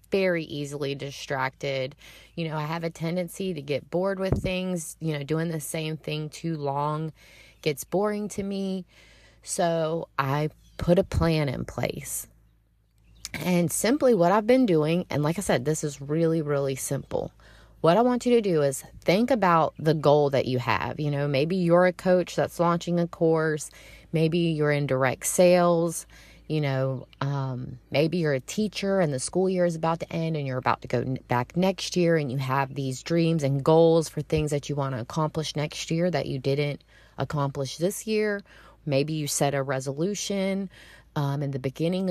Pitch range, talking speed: 140-175 Hz, 185 wpm